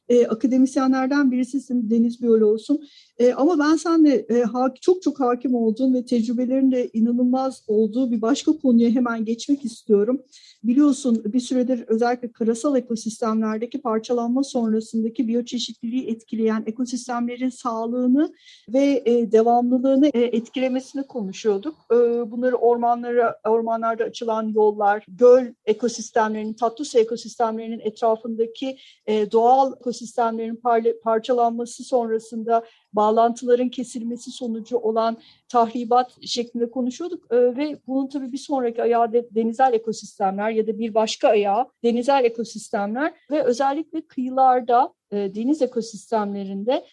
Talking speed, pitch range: 105 wpm, 230-265 Hz